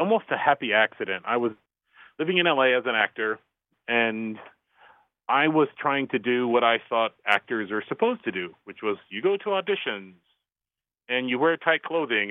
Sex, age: male, 30-49